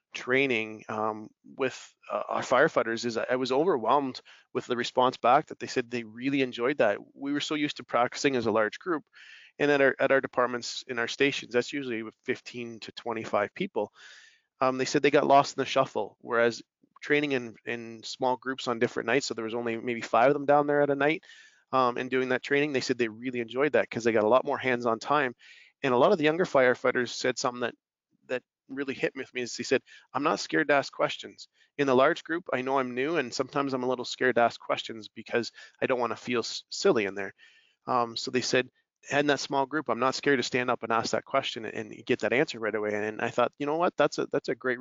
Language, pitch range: English, 120-140 Hz